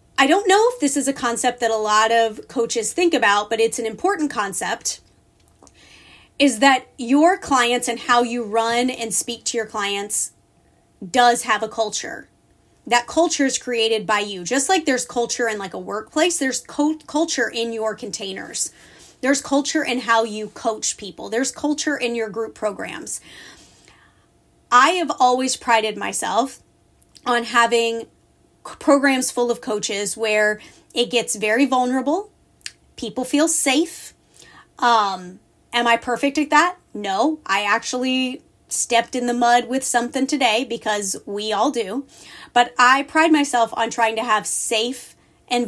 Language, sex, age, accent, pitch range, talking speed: English, female, 30-49, American, 220-270 Hz, 155 wpm